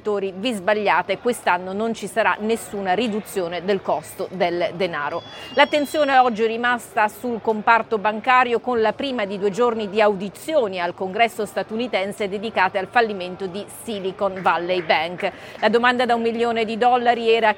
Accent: native